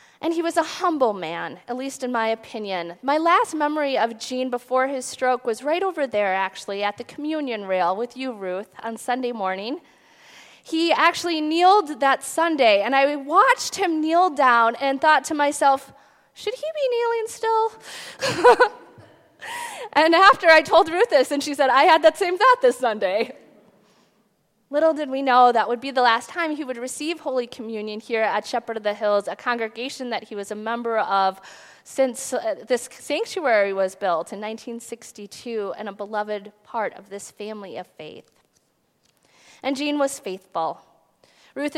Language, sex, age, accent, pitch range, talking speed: English, female, 20-39, American, 220-315 Hz, 170 wpm